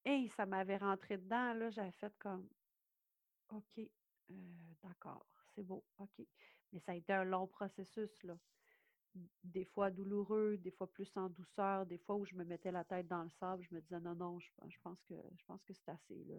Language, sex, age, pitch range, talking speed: French, female, 40-59, 185-215 Hz, 210 wpm